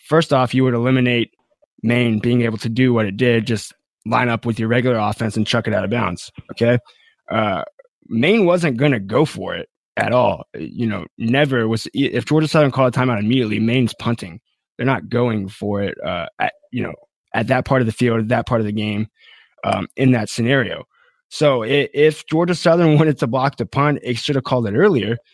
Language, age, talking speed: English, 20-39, 215 wpm